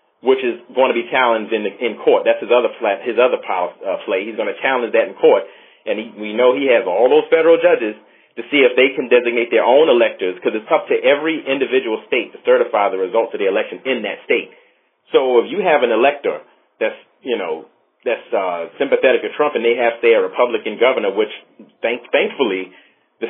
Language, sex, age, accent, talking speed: English, male, 40-59, American, 215 wpm